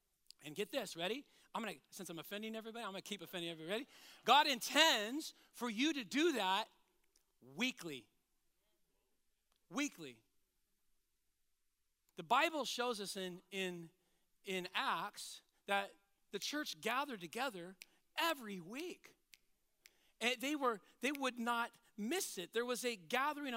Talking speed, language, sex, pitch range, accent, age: 130 wpm, English, male, 190-240 Hz, American, 40-59